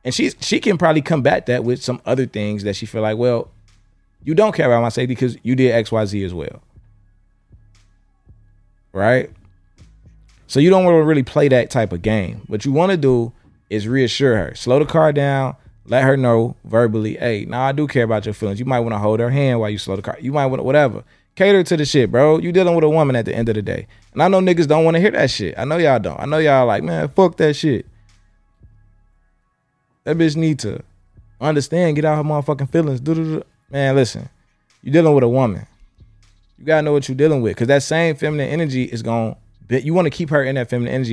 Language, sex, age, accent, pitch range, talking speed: English, male, 20-39, American, 105-145 Hz, 240 wpm